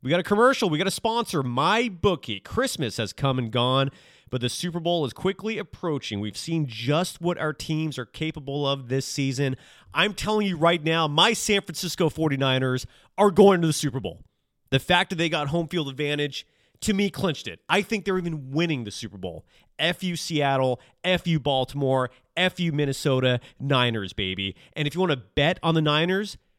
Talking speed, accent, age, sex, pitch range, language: 190 wpm, American, 30-49, male, 130-175 Hz, English